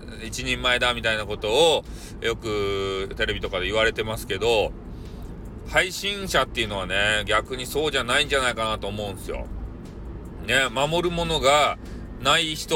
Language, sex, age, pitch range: Japanese, male, 40-59, 110-140 Hz